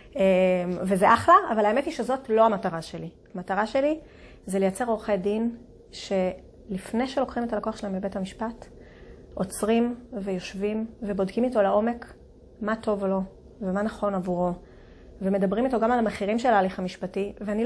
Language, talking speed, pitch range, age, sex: Hebrew, 145 wpm, 200-240 Hz, 30-49, female